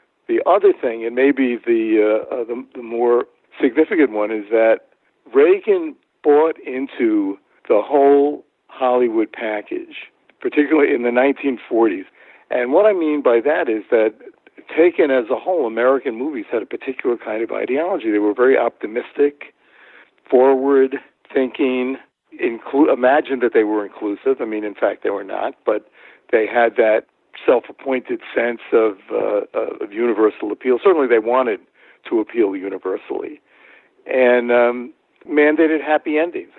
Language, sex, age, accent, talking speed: English, male, 60-79, American, 140 wpm